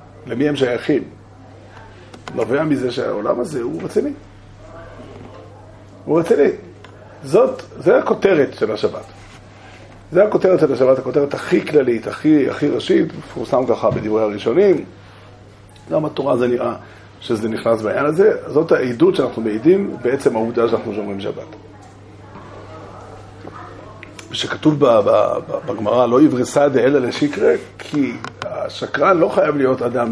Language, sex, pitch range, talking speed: Hebrew, male, 105-135 Hz, 120 wpm